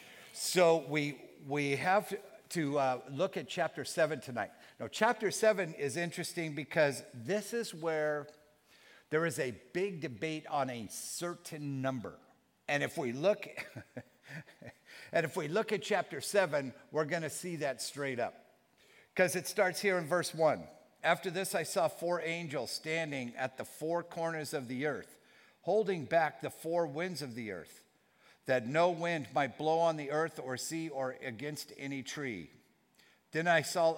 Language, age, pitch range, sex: English, 50-69, 140-175 Hz, male